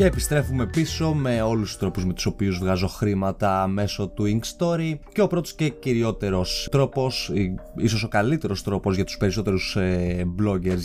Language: Greek